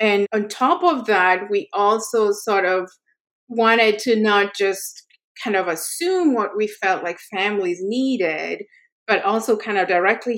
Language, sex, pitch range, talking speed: English, female, 185-240 Hz, 155 wpm